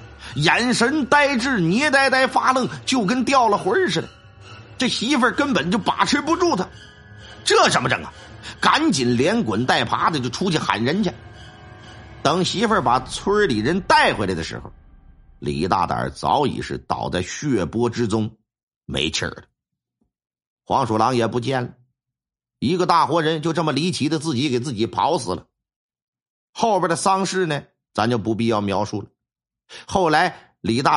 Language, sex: Chinese, male